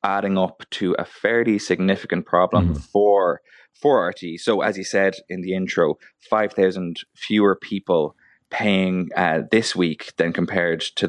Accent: Irish